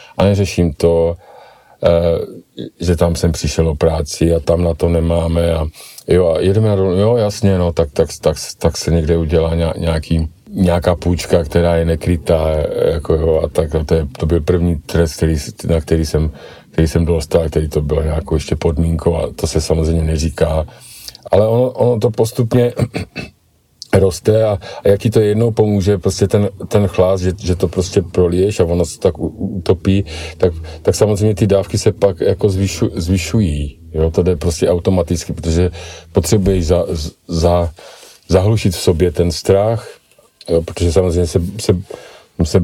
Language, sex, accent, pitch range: Czech, male, native, 80-95 Hz